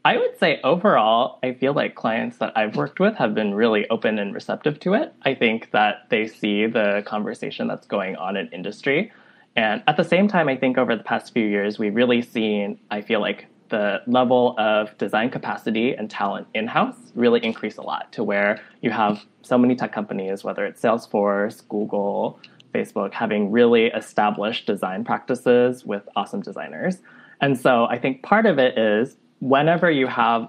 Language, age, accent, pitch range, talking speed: English, 20-39, American, 105-140 Hz, 185 wpm